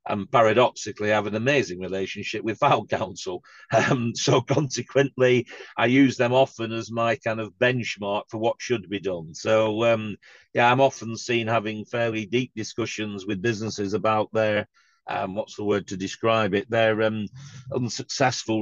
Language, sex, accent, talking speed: English, male, British, 165 wpm